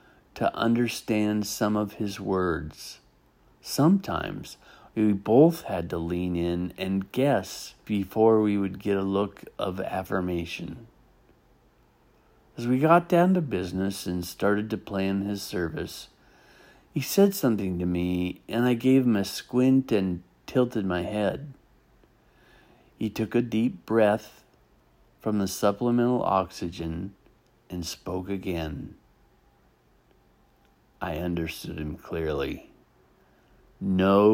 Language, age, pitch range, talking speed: English, 50-69, 90-120 Hz, 115 wpm